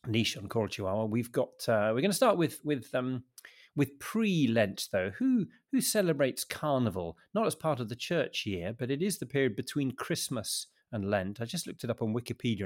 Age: 40-59